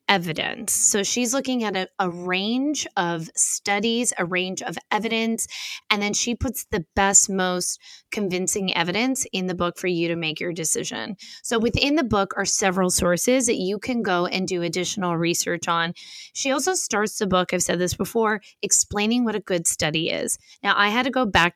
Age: 20-39